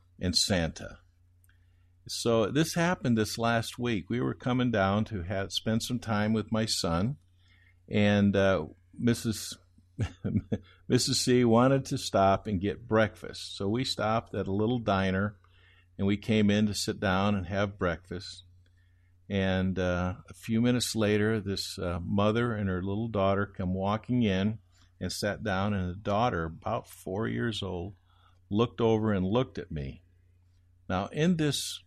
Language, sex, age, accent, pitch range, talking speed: English, male, 50-69, American, 90-110 Hz, 155 wpm